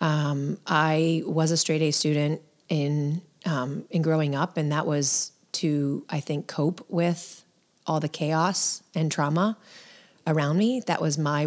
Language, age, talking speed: English, 30-49, 155 wpm